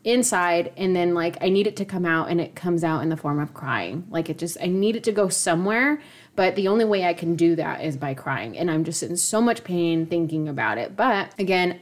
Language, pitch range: English, 165-195 Hz